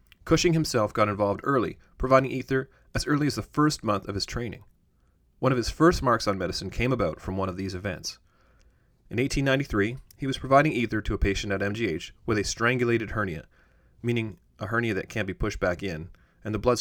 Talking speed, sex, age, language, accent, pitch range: 205 wpm, male, 30-49, English, American, 95-130 Hz